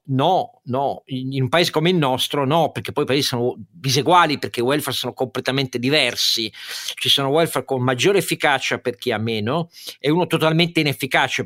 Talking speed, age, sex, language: 185 wpm, 50-69, male, Italian